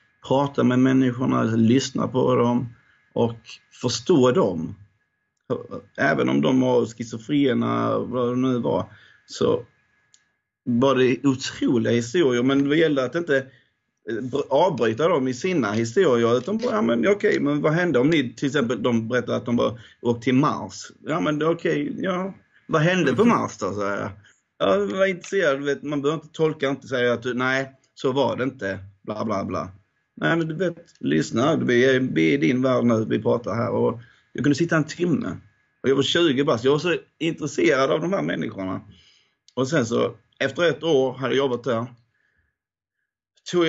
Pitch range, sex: 120-150 Hz, male